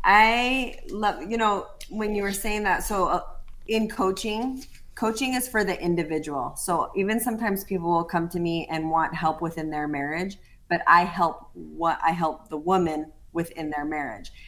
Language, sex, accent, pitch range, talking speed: English, female, American, 165-210 Hz, 175 wpm